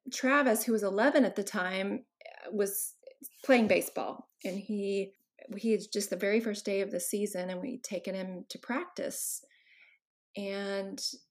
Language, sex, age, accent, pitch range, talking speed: English, female, 30-49, American, 195-255 Hz, 155 wpm